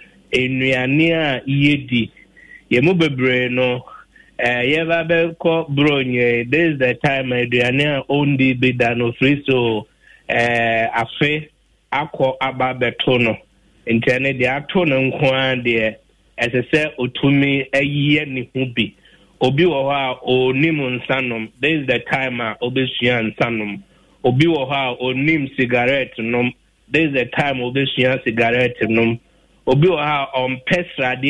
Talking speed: 125 wpm